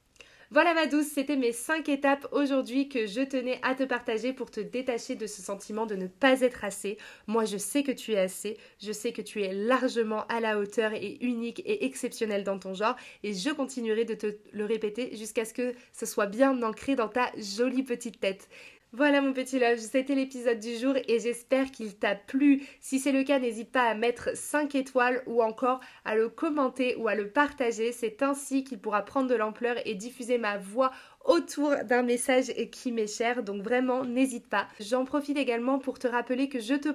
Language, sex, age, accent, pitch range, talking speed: French, female, 20-39, French, 225-270 Hz, 210 wpm